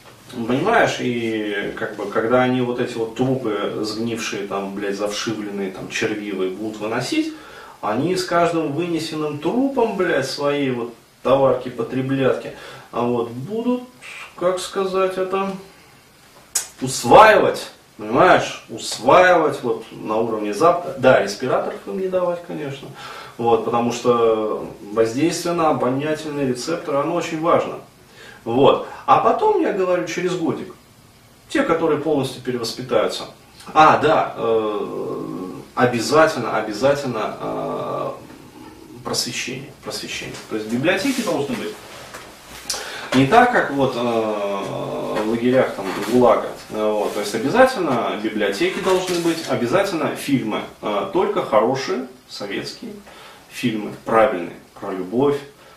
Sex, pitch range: male, 110-170 Hz